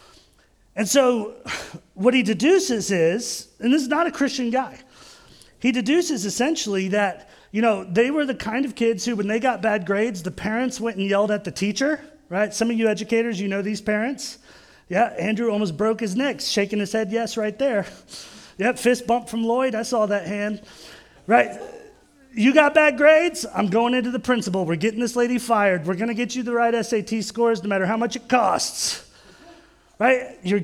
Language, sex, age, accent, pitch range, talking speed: English, male, 30-49, American, 205-260 Hz, 200 wpm